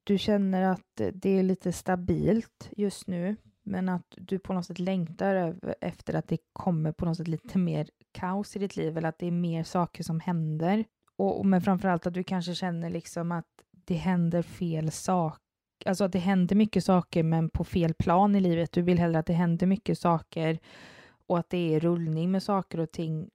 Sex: female